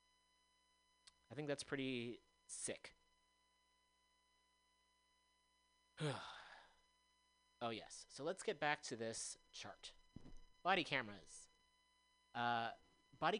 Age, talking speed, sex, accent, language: 30-49, 80 wpm, male, American, English